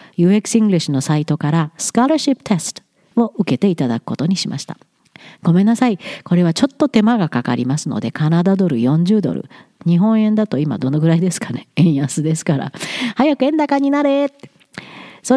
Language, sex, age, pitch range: Japanese, female, 50-69, 165-230 Hz